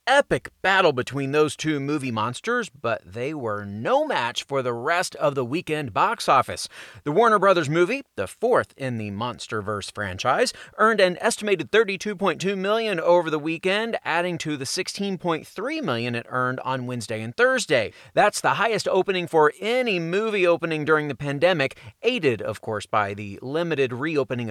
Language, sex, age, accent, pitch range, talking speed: English, male, 30-49, American, 130-190 Hz, 165 wpm